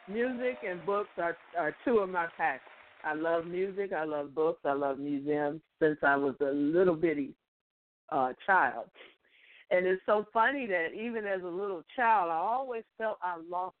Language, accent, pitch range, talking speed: English, American, 170-220 Hz, 180 wpm